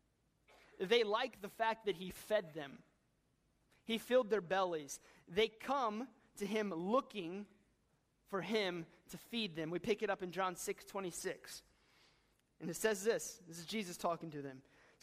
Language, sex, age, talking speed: English, male, 30-49, 160 wpm